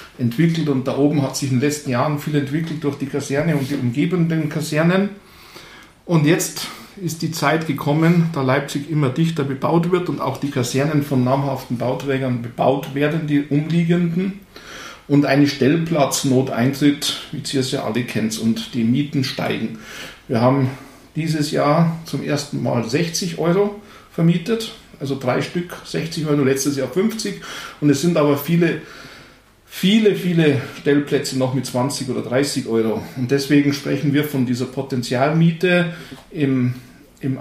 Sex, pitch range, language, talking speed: male, 130-155 Hz, German, 155 wpm